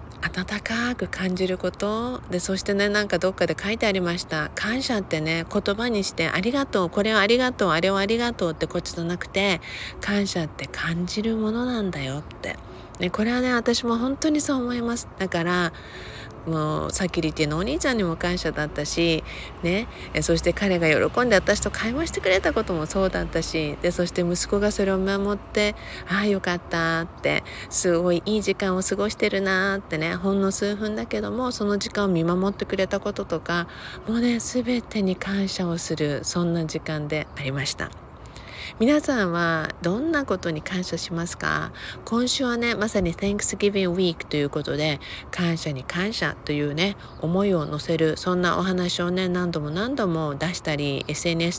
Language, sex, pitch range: Japanese, female, 160-200 Hz